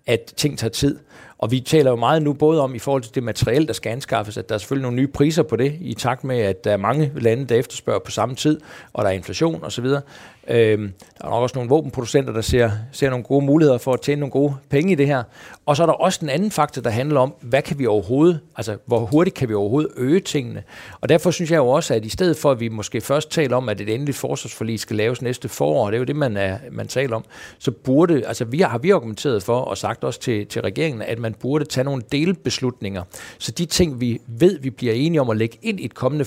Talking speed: 265 wpm